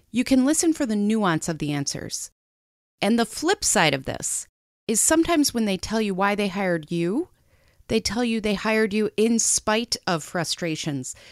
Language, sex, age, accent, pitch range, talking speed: English, female, 30-49, American, 165-240 Hz, 185 wpm